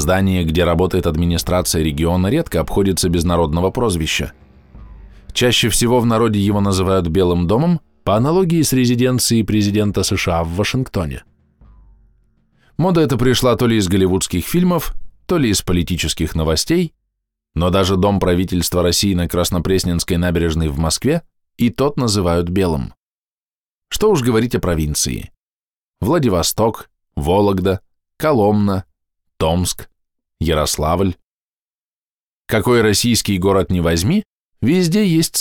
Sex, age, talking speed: male, 20-39, 120 wpm